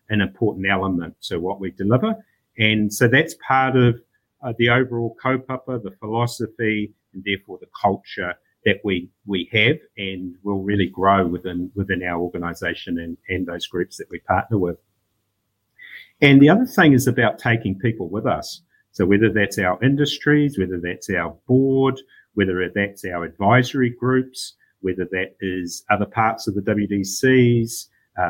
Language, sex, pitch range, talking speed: English, male, 95-120 Hz, 160 wpm